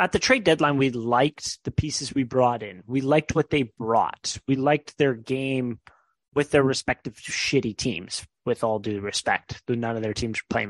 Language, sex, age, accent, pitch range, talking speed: English, male, 20-39, American, 120-150 Hz, 195 wpm